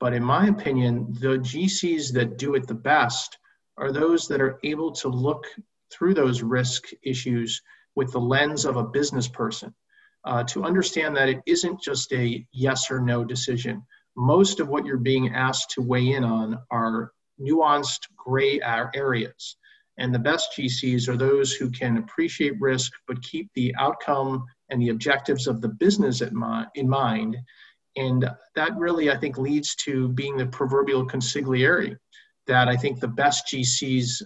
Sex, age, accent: male, 50-69, American